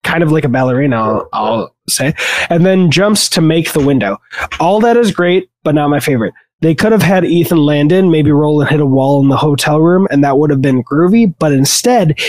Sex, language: male, English